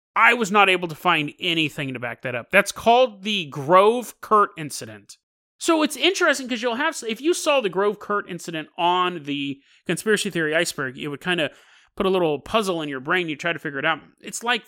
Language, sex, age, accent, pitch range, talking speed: English, male, 30-49, American, 150-220 Hz, 220 wpm